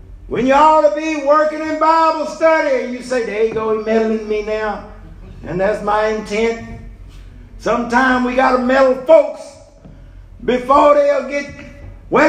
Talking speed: 155 wpm